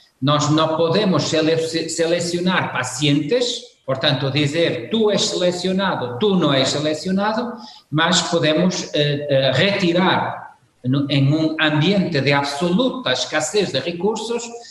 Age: 50-69